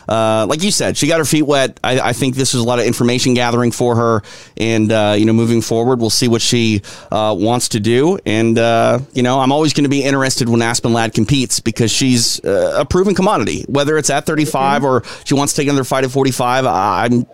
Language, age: English, 30-49